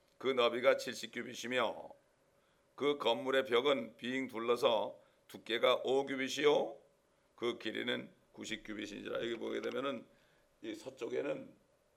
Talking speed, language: 90 wpm, English